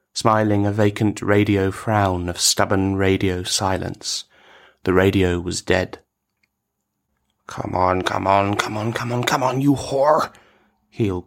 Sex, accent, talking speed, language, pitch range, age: male, British, 140 wpm, English, 100-110 Hz, 30-49